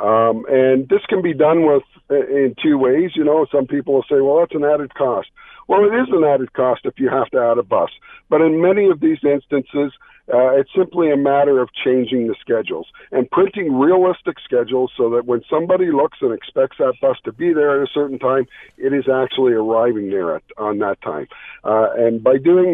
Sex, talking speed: male, 215 wpm